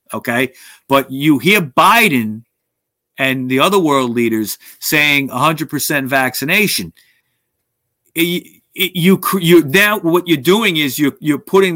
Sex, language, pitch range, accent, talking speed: male, English, 130-165 Hz, American, 115 wpm